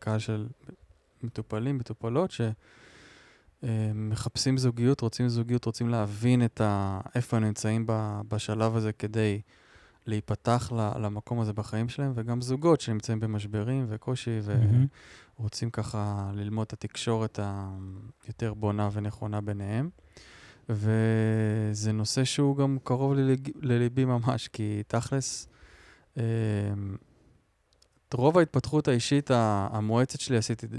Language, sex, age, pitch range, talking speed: Hebrew, male, 20-39, 105-125 Hz, 95 wpm